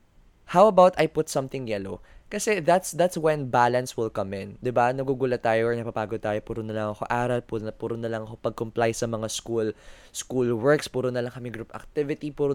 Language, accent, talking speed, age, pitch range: Filipino, native, 205 wpm, 20-39, 110-145 Hz